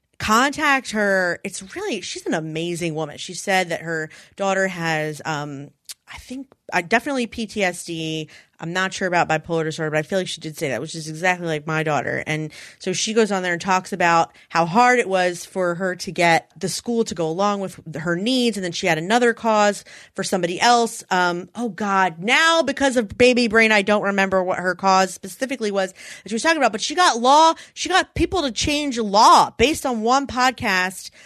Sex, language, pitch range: female, English, 170-245 Hz